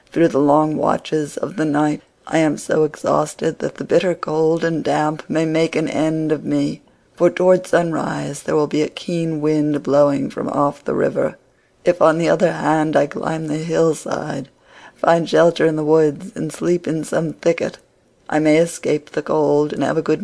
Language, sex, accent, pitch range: Korean, female, American, 150-165 Hz